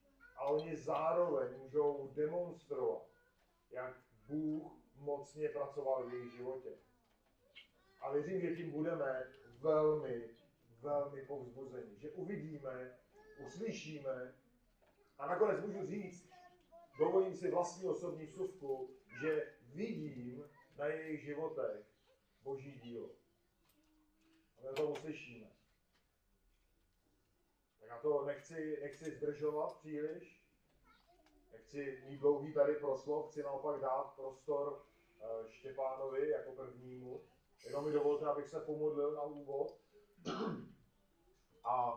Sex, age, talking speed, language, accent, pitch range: male, 40-59, 100 wpm, Czech, native, 130-160 Hz